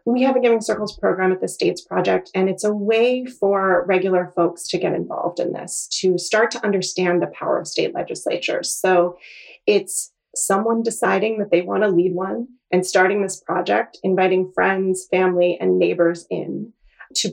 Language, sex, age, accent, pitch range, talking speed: English, female, 30-49, American, 185-250 Hz, 180 wpm